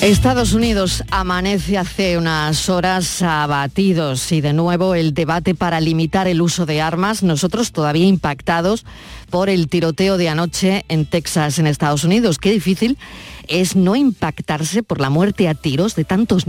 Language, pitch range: Spanish, 160-200 Hz